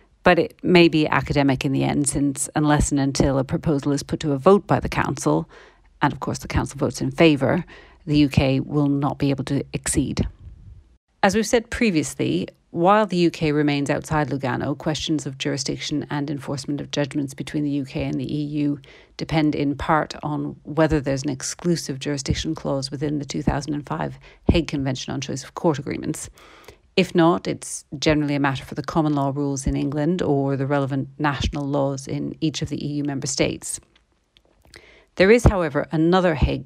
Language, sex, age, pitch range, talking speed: English, female, 40-59, 140-160 Hz, 180 wpm